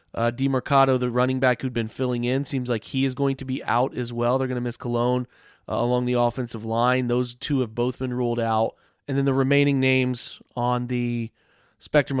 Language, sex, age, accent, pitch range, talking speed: English, male, 30-49, American, 120-140 Hz, 220 wpm